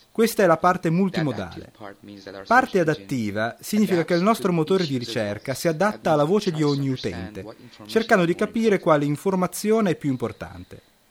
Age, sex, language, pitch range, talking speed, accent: 30-49, male, Italian, 120-190 Hz, 155 wpm, native